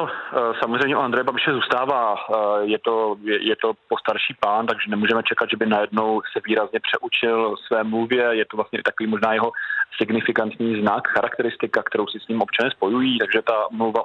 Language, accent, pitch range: Czech, native, 105-120 Hz